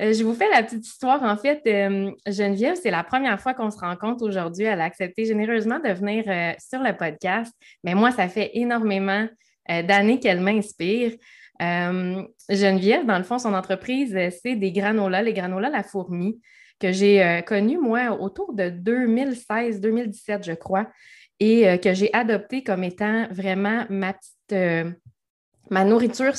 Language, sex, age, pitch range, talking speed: French, female, 20-39, 190-225 Hz, 170 wpm